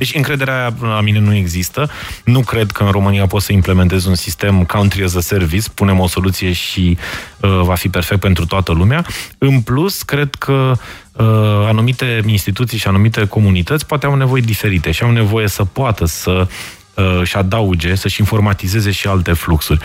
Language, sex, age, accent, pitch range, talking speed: Romanian, male, 20-39, native, 95-125 Hz, 180 wpm